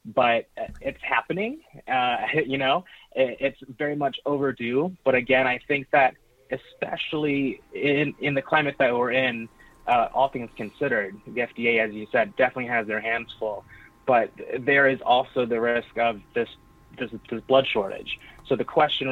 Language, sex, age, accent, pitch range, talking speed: English, male, 20-39, American, 115-135 Hz, 160 wpm